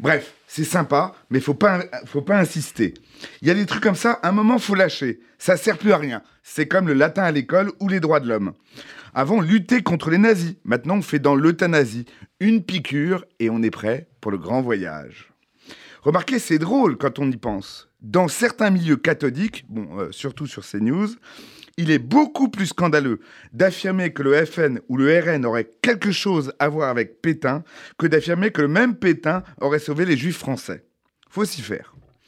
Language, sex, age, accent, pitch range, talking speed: French, male, 30-49, French, 130-185 Hz, 200 wpm